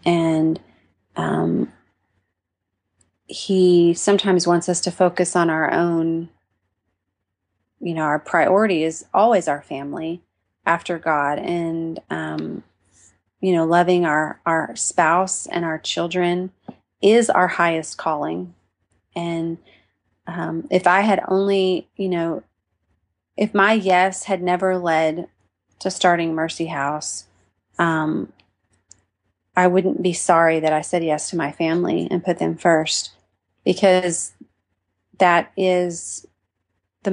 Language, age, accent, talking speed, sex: English, 30-49, American, 120 wpm, female